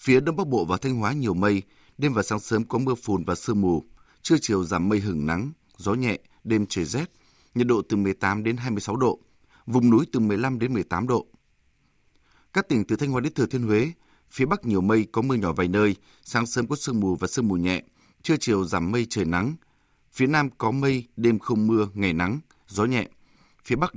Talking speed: 225 wpm